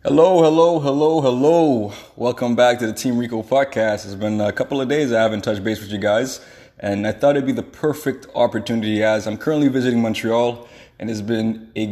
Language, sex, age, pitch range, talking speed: English, male, 20-39, 105-125 Hz, 205 wpm